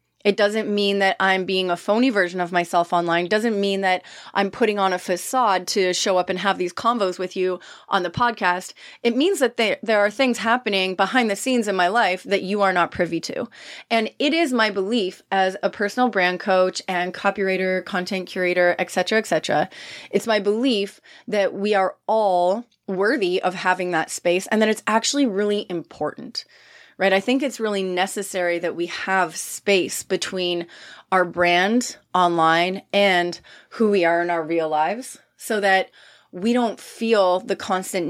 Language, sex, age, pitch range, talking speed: English, female, 30-49, 180-210 Hz, 185 wpm